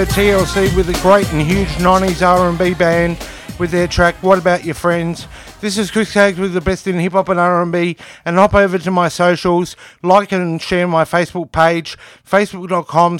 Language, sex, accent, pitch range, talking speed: English, male, Australian, 170-190 Hz, 180 wpm